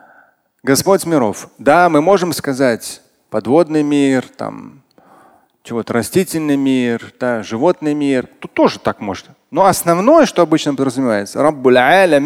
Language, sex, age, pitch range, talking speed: Russian, male, 30-49, 130-195 Hz, 125 wpm